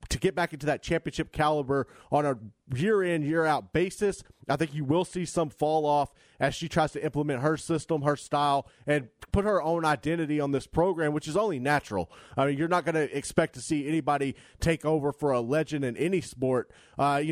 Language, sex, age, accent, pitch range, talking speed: English, male, 30-49, American, 140-165 Hz, 210 wpm